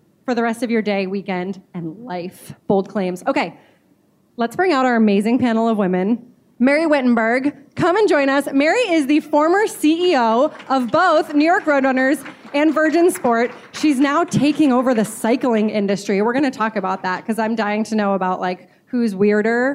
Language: English